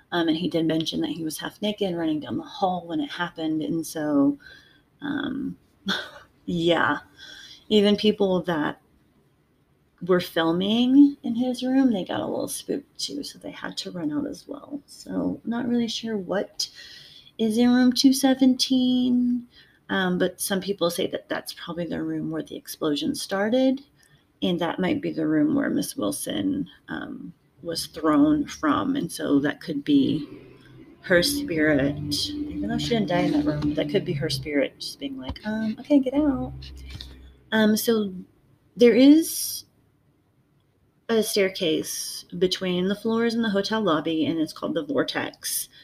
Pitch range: 160-255 Hz